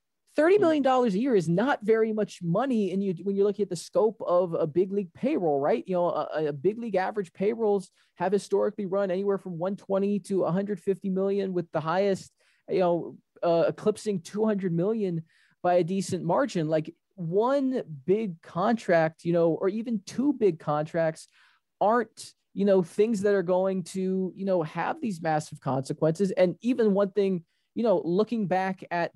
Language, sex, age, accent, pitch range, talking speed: English, male, 20-39, American, 165-205 Hz, 190 wpm